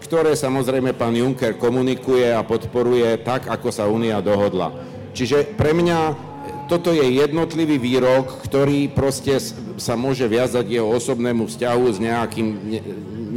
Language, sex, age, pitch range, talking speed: Slovak, male, 50-69, 115-145 Hz, 135 wpm